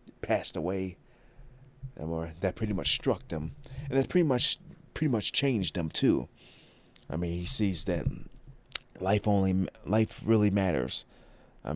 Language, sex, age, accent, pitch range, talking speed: English, male, 30-49, American, 80-105 Hz, 145 wpm